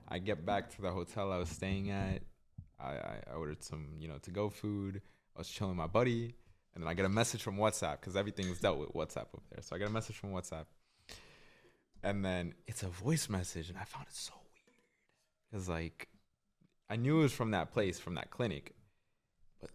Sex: male